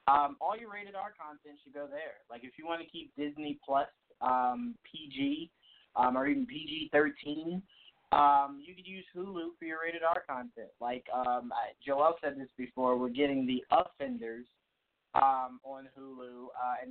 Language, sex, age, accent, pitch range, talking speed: English, male, 20-39, American, 130-185 Hz, 165 wpm